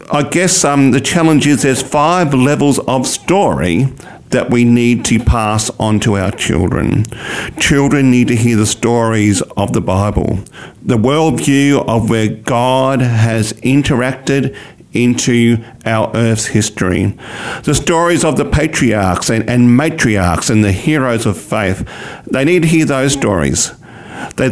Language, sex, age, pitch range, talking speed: English, male, 50-69, 110-145 Hz, 145 wpm